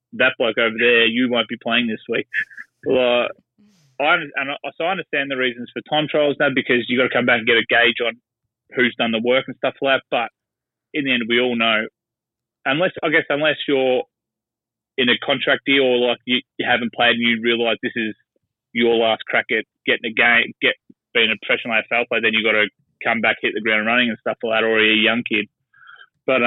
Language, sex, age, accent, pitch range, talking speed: English, male, 20-39, Australian, 115-130 Hz, 235 wpm